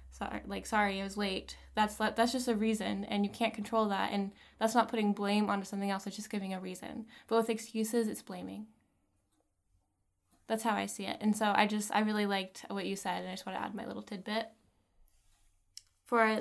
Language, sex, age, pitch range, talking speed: English, female, 20-39, 185-225 Hz, 210 wpm